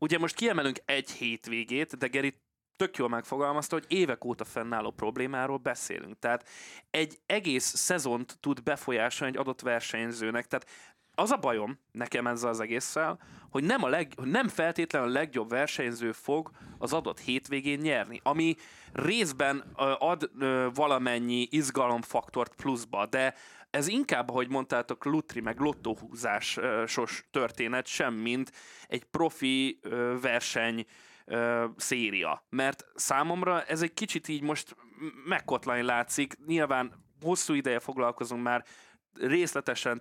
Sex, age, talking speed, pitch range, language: male, 20-39, 125 wpm, 120-150 Hz, Hungarian